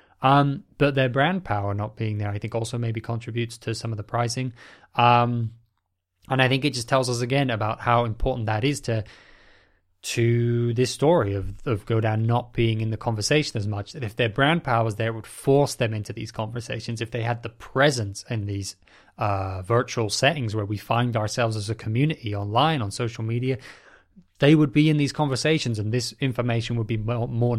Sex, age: male, 20-39